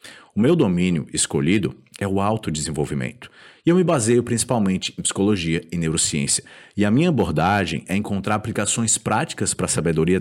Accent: Brazilian